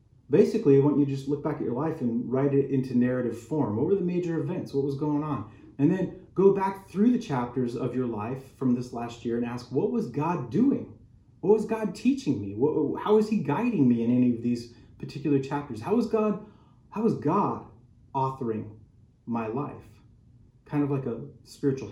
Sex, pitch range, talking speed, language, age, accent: male, 120-145 Hz, 210 wpm, English, 30-49, American